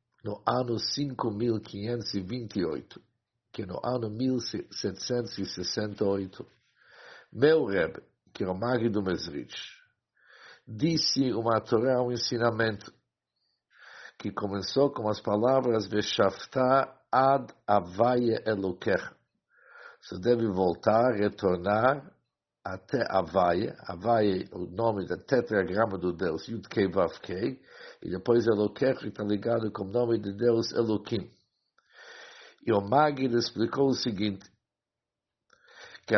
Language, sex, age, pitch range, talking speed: German, male, 50-69, 100-120 Hz, 115 wpm